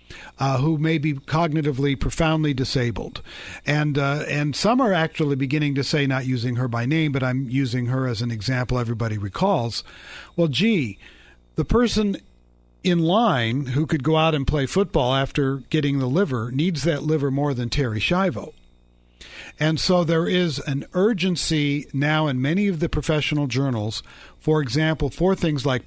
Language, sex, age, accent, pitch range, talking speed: English, male, 50-69, American, 125-165 Hz, 165 wpm